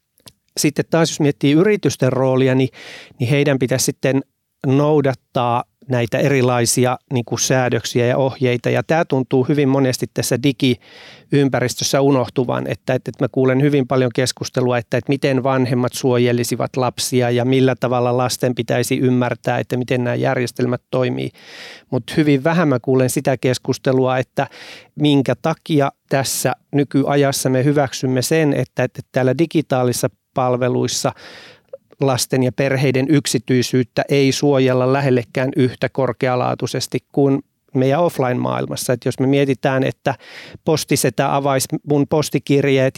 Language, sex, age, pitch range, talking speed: Finnish, male, 30-49, 125-140 Hz, 130 wpm